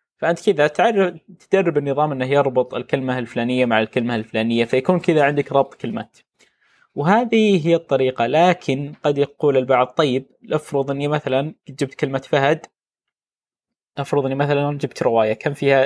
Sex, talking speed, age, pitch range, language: male, 145 wpm, 20-39, 130-155 Hz, Arabic